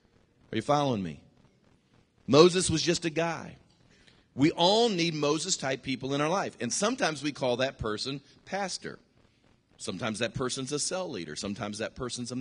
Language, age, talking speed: English, 40-59, 165 wpm